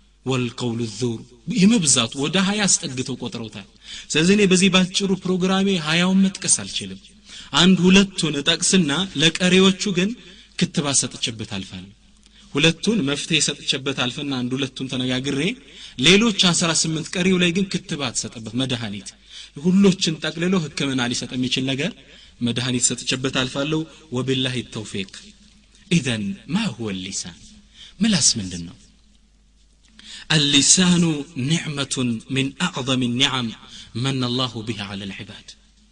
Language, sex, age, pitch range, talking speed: Amharic, male, 30-49, 120-175 Hz, 95 wpm